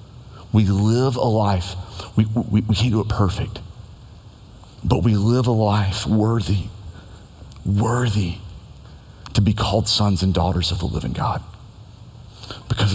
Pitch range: 95-120 Hz